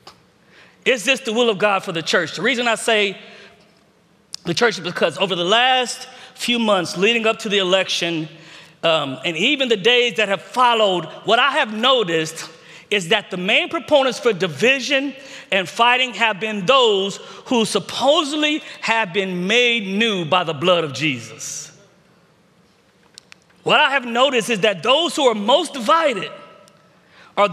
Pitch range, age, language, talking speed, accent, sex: 190-260 Hz, 40-59, English, 160 wpm, American, male